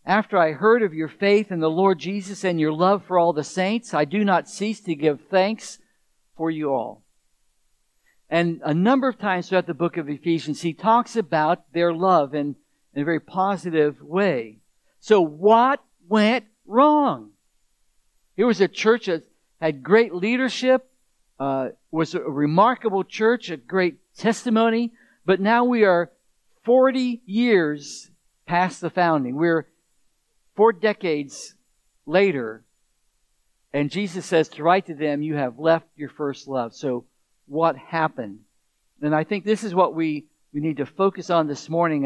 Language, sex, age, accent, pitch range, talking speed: English, male, 60-79, American, 160-215 Hz, 160 wpm